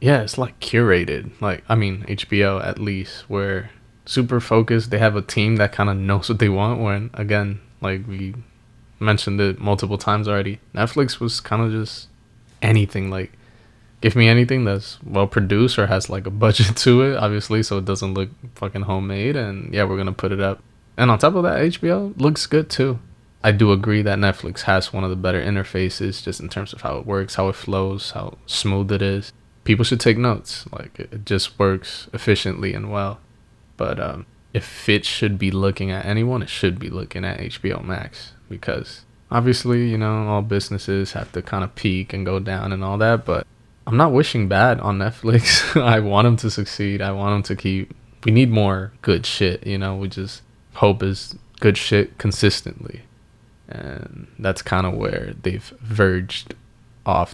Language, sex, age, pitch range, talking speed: English, male, 20-39, 100-115 Hz, 195 wpm